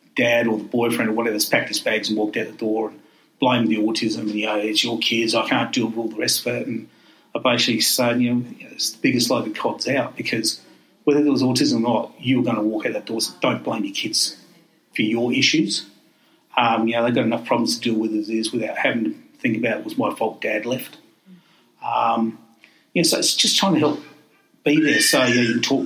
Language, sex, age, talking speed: English, male, 40-59, 255 wpm